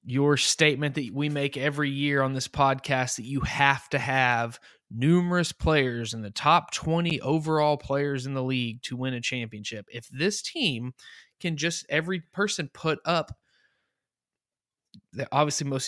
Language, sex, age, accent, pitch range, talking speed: English, male, 20-39, American, 135-155 Hz, 155 wpm